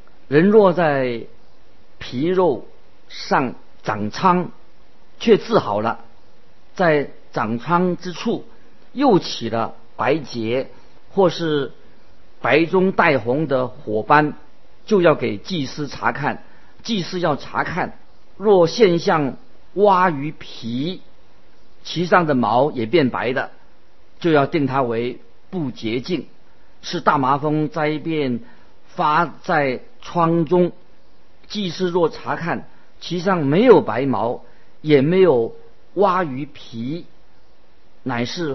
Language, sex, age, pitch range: Chinese, male, 50-69, 135-180 Hz